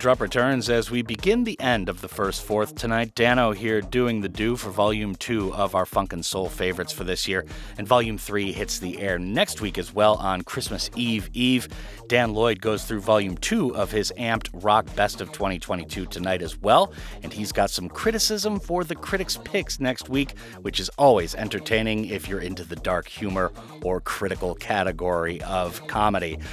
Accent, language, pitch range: American, English, 95-115 Hz